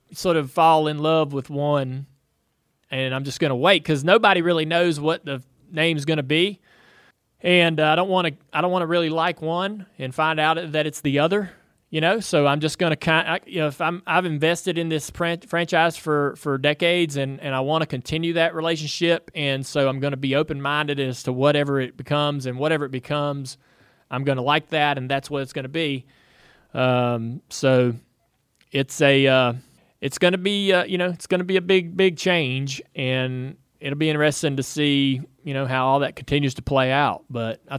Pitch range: 130-165 Hz